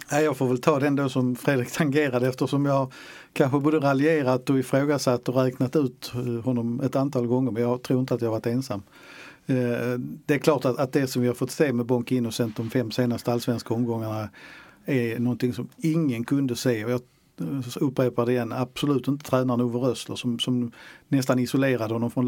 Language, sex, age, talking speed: Swedish, male, 50-69, 190 wpm